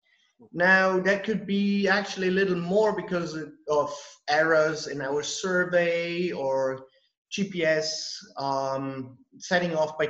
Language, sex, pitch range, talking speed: English, male, 150-190 Hz, 125 wpm